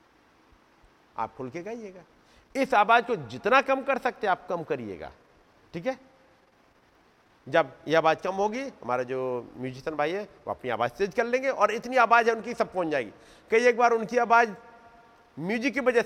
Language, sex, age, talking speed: Hindi, male, 50-69, 125 wpm